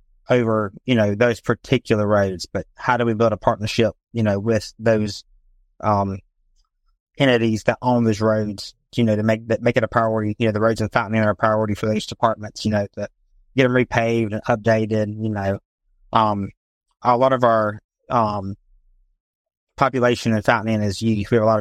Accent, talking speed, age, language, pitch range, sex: American, 195 wpm, 30-49, English, 105-120 Hz, male